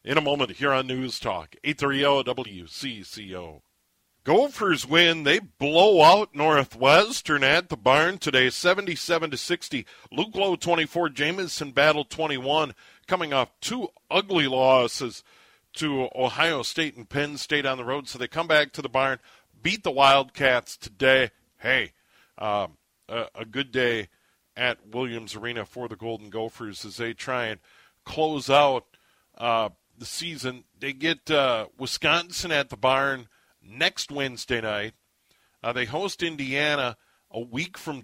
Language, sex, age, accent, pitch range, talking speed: English, male, 50-69, American, 115-150 Hz, 145 wpm